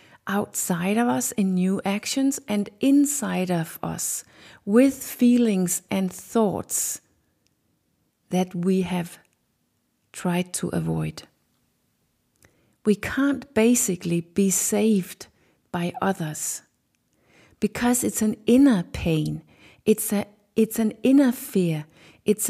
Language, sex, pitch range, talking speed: English, female, 180-235 Hz, 100 wpm